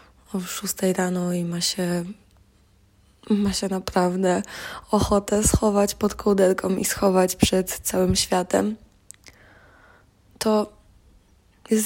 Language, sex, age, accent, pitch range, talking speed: Polish, female, 20-39, native, 160-195 Hz, 95 wpm